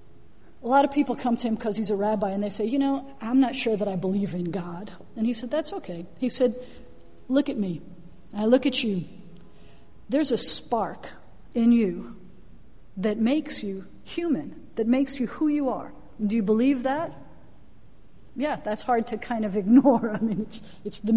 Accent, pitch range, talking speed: American, 210-255 Hz, 195 wpm